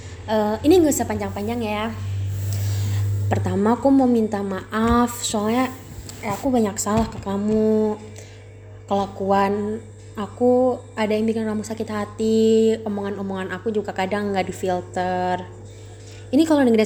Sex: female